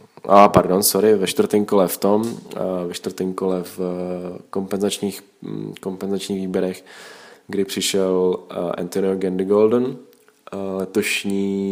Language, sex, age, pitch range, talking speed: Slovak, male, 20-39, 90-100 Hz, 95 wpm